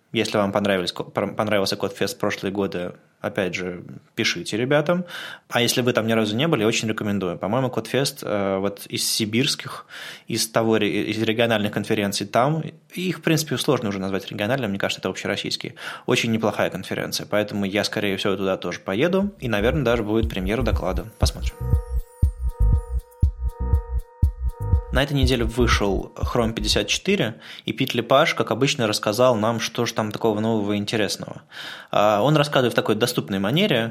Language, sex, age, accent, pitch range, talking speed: Russian, male, 20-39, native, 100-120 Hz, 150 wpm